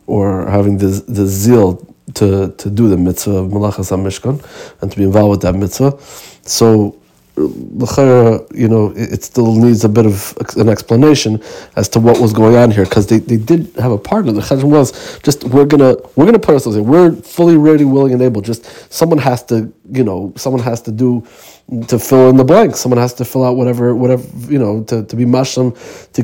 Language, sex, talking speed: Hebrew, male, 200 wpm